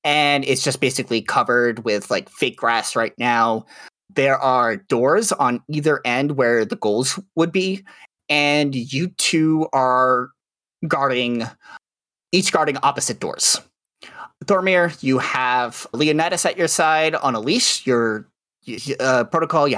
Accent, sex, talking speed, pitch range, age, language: American, male, 135 wpm, 120-170 Hz, 30-49, English